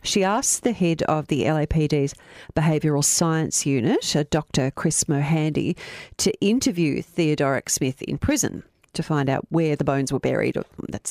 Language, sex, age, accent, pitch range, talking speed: English, female, 40-59, Australian, 145-175 Hz, 150 wpm